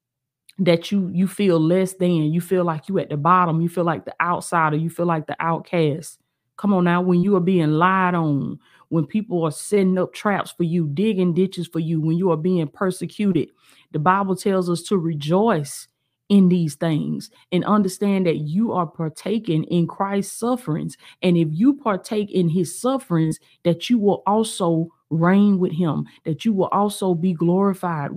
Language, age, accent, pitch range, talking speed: English, 30-49, American, 160-200 Hz, 185 wpm